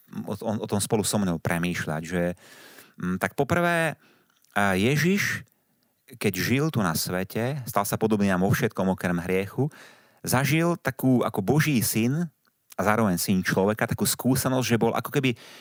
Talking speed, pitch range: 160 wpm, 95-125 Hz